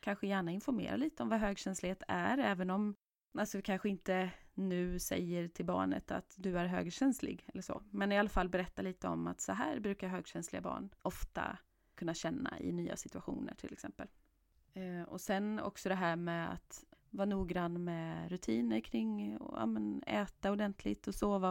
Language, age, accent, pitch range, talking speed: Swedish, 30-49, native, 180-255 Hz, 175 wpm